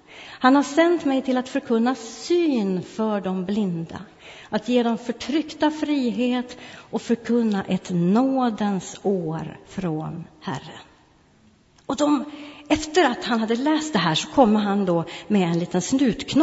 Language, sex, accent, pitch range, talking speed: Swedish, female, native, 175-270 Hz, 140 wpm